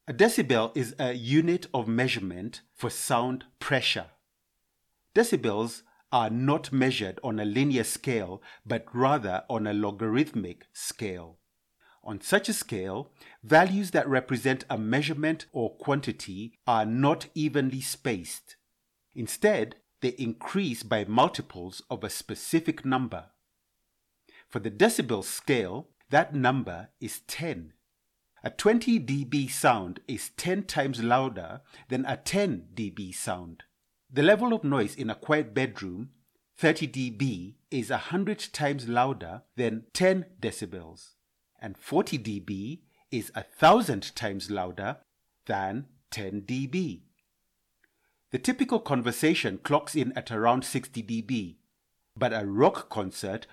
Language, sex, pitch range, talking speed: English, male, 105-145 Hz, 120 wpm